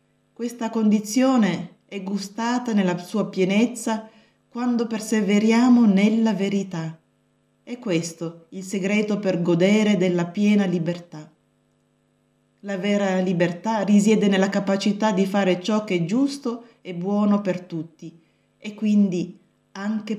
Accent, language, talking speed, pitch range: native, Italian, 115 wpm, 175-220 Hz